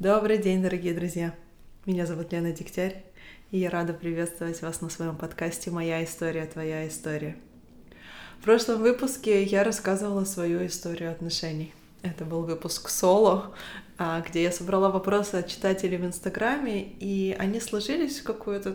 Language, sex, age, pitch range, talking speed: Russian, female, 20-39, 170-200 Hz, 145 wpm